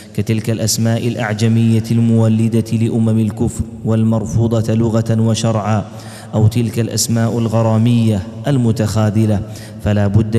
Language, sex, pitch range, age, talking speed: Arabic, male, 110-115 Hz, 30-49, 90 wpm